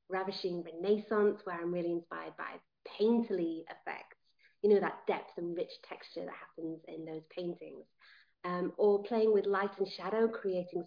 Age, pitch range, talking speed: 30-49, 185-240 Hz, 160 wpm